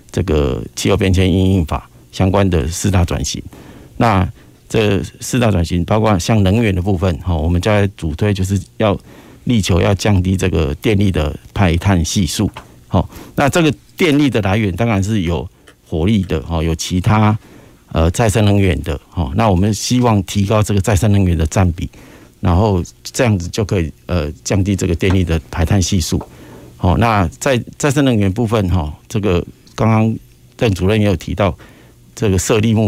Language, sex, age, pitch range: Chinese, male, 50-69, 85-105 Hz